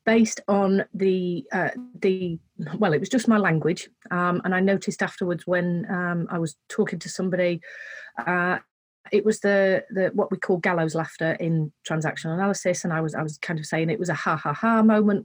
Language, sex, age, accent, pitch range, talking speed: English, female, 30-49, British, 170-210 Hz, 195 wpm